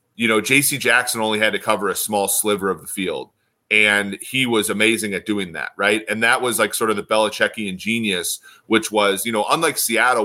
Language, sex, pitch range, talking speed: English, male, 100-115 Hz, 215 wpm